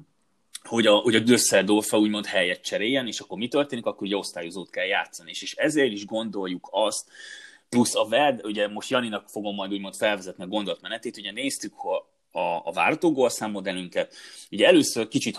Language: Hungarian